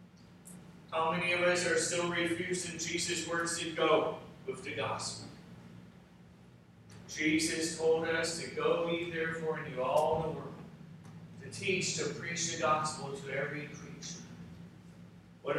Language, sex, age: English, male, 40-59